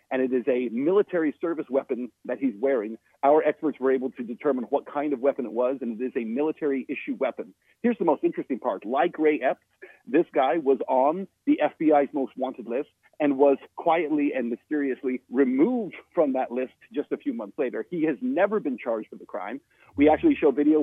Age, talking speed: 40-59, 205 wpm